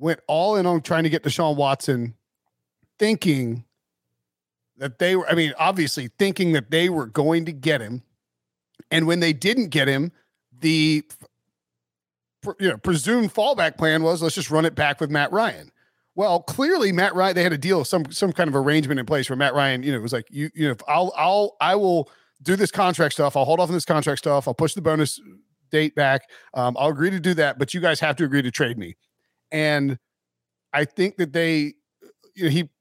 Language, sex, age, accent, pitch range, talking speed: English, male, 40-59, American, 140-190 Hz, 205 wpm